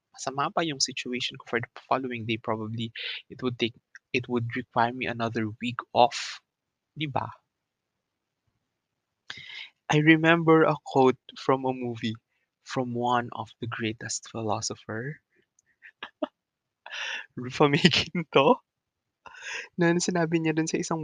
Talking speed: 125 wpm